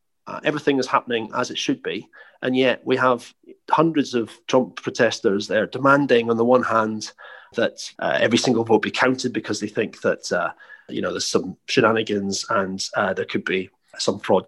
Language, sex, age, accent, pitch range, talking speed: English, male, 30-49, British, 105-130 Hz, 190 wpm